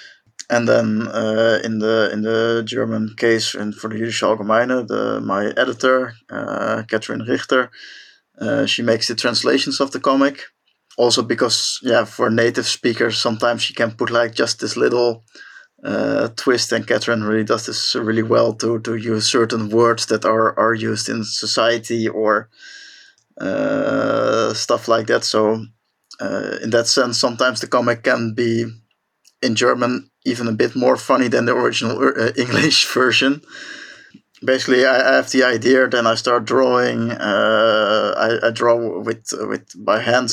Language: English